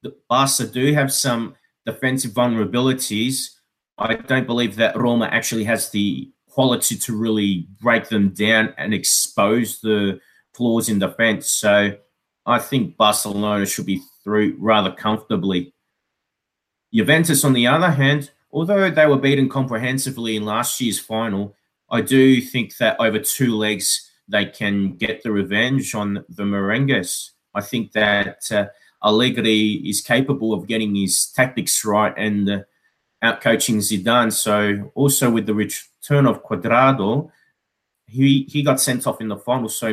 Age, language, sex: 30-49, English, male